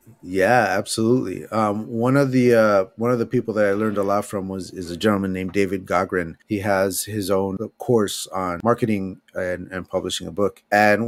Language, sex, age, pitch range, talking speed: English, male, 30-49, 95-110 Hz, 200 wpm